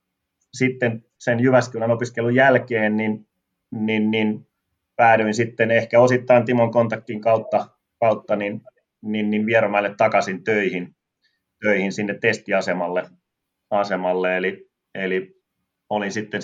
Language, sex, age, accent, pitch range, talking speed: Finnish, male, 30-49, native, 95-110 Hz, 110 wpm